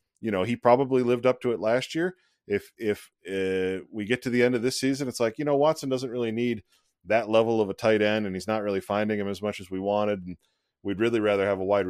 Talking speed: 265 wpm